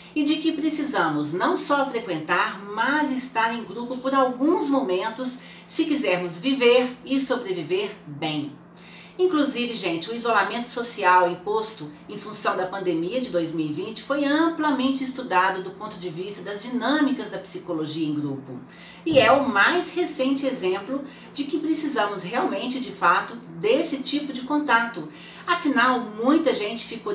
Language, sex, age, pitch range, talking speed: Portuguese, female, 40-59, 180-270 Hz, 145 wpm